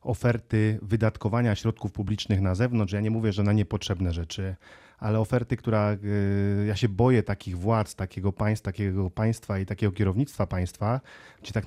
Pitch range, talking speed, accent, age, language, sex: 105-125 Hz, 165 wpm, native, 30-49, Polish, male